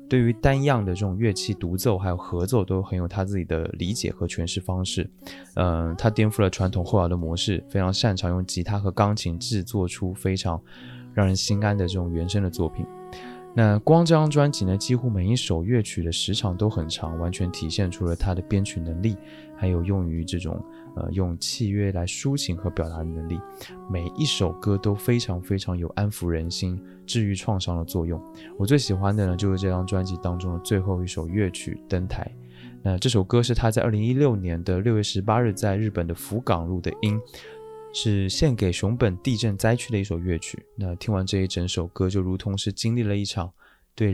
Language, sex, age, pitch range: Chinese, male, 20-39, 90-110 Hz